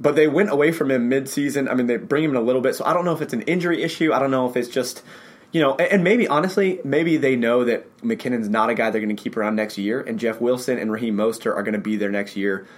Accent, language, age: American, English, 20-39